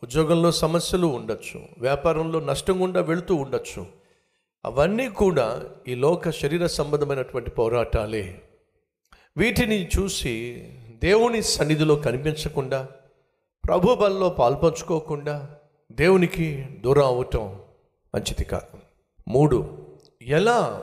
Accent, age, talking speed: native, 50-69, 80 wpm